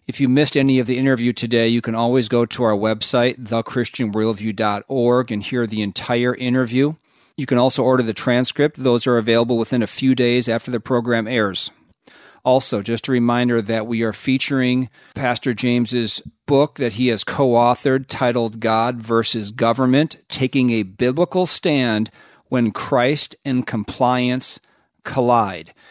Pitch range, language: 115-130 Hz, English